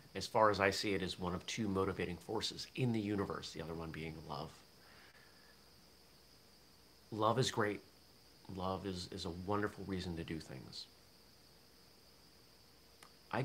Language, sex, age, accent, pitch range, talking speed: English, male, 30-49, American, 85-105 Hz, 150 wpm